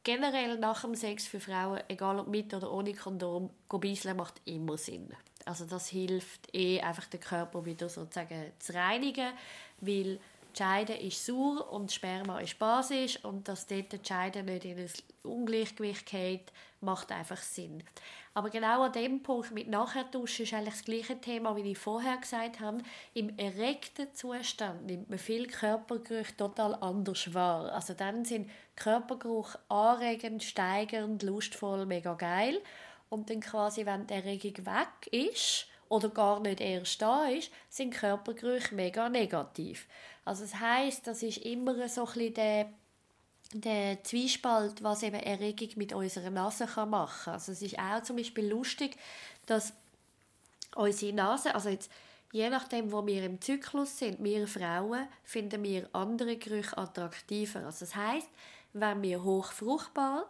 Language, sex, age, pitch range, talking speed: German, female, 20-39, 195-235 Hz, 155 wpm